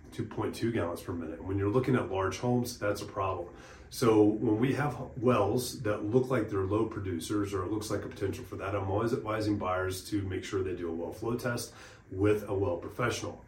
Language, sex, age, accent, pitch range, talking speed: English, male, 30-49, American, 95-115 Hz, 215 wpm